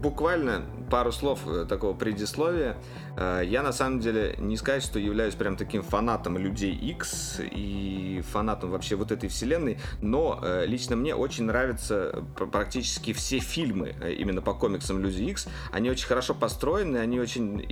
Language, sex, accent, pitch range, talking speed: Russian, male, native, 95-125 Hz, 145 wpm